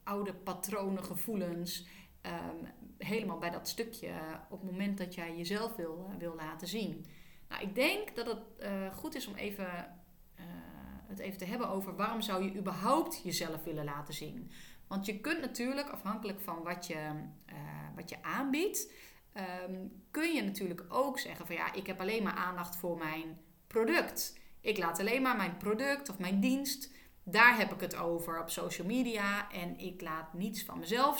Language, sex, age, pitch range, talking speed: Dutch, female, 30-49, 175-230 Hz, 180 wpm